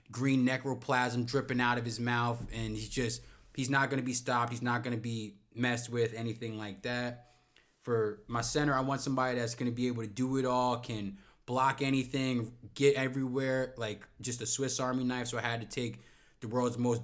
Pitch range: 115-130 Hz